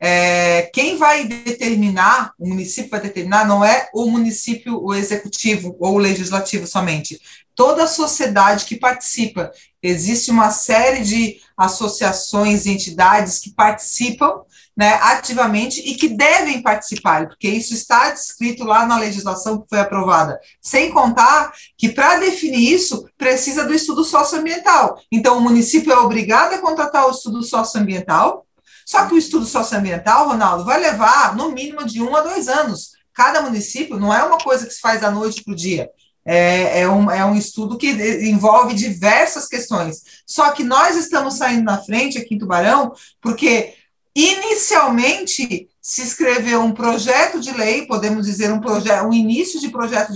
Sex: female